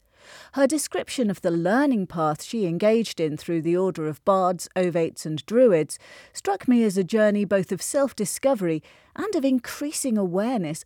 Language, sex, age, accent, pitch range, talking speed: English, female, 40-59, British, 160-235 Hz, 160 wpm